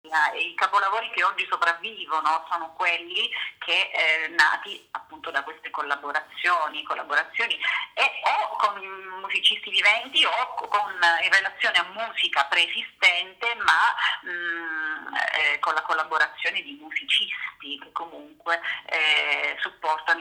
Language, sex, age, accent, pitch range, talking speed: Italian, female, 30-49, native, 155-230 Hz, 120 wpm